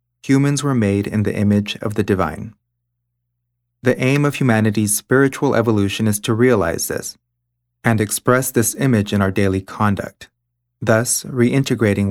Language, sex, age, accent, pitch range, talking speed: English, male, 30-49, American, 105-120 Hz, 145 wpm